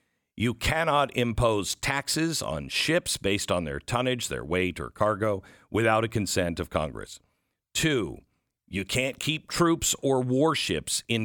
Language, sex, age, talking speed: English, male, 50-69, 145 wpm